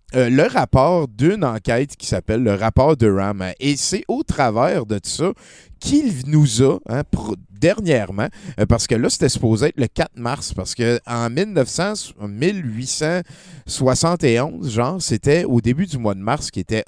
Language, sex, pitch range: French, male, 105-145 Hz